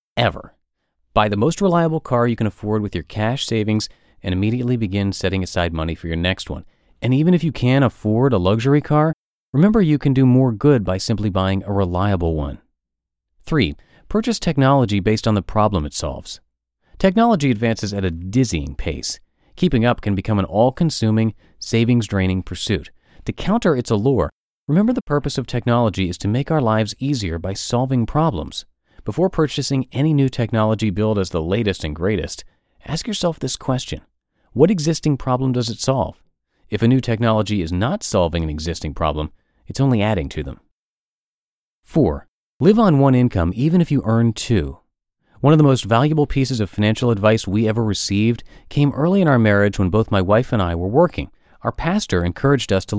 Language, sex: English, male